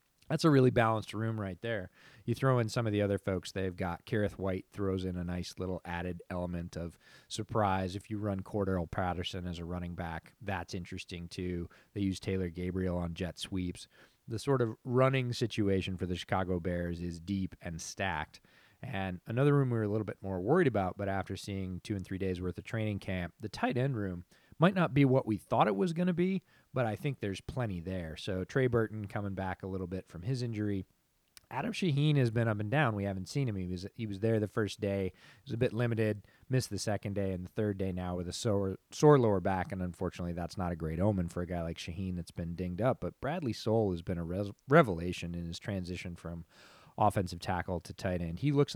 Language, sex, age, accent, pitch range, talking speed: English, male, 30-49, American, 90-115 Hz, 230 wpm